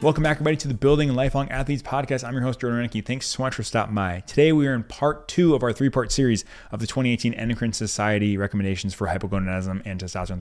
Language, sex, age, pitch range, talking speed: English, male, 20-39, 95-130 Hz, 230 wpm